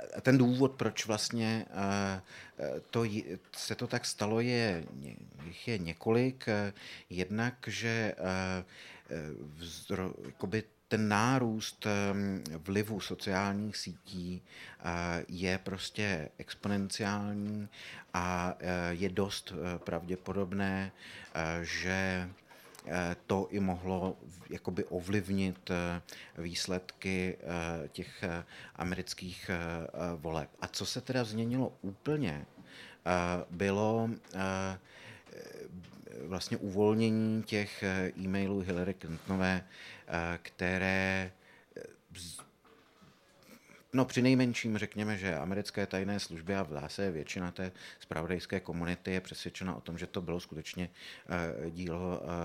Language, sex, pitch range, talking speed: Slovak, male, 85-100 Hz, 80 wpm